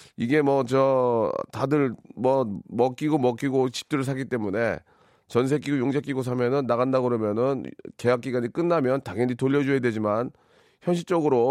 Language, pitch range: Korean, 115-140 Hz